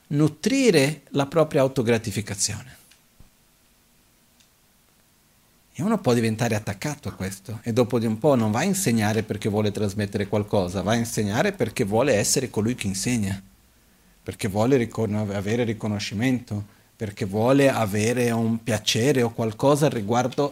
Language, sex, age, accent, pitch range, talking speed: Italian, male, 50-69, native, 105-140 Hz, 130 wpm